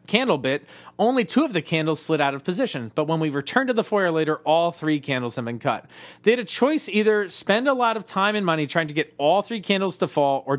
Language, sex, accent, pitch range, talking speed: English, male, American, 140-205 Hz, 260 wpm